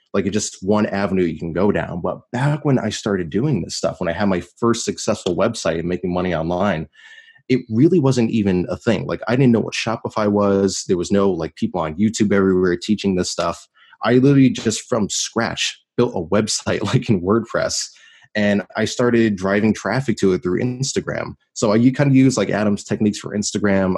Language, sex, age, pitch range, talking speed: English, male, 20-39, 95-125 Hz, 205 wpm